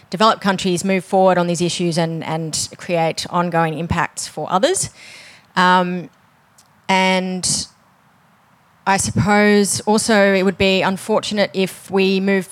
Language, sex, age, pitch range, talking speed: English, female, 30-49, 170-195 Hz, 125 wpm